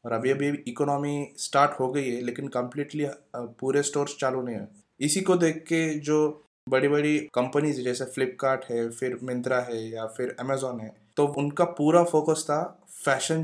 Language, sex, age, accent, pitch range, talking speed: English, male, 20-39, Indian, 130-155 Hz, 165 wpm